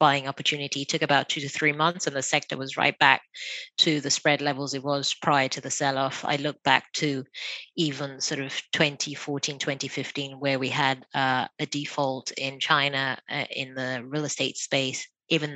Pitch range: 135-155 Hz